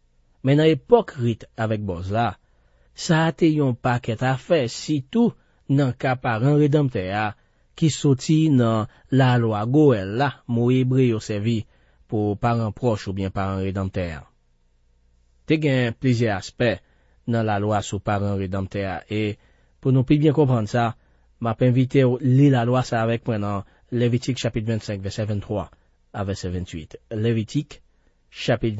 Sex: male